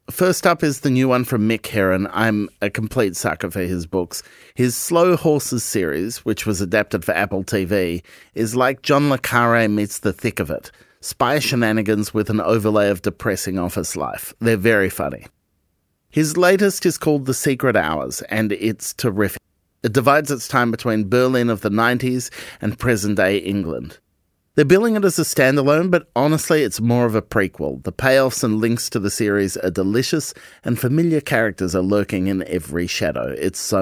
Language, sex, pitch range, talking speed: English, male, 100-135 Hz, 180 wpm